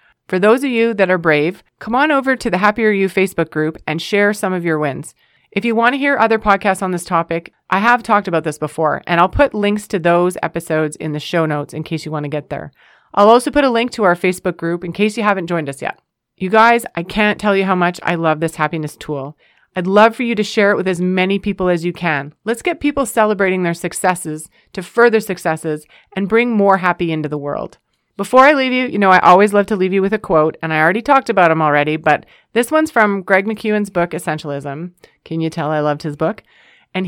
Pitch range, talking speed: 165-215 Hz, 250 wpm